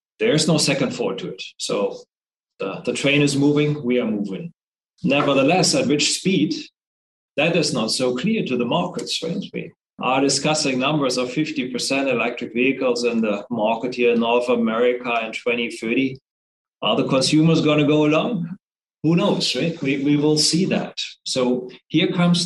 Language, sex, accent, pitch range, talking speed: English, male, German, 125-150 Hz, 170 wpm